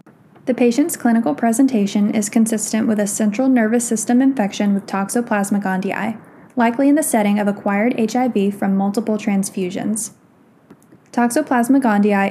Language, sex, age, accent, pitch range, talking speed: English, female, 10-29, American, 200-240 Hz, 130 wpm